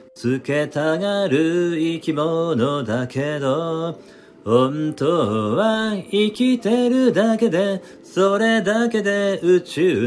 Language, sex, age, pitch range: Japanese, male, 40-59, 135-185 Hz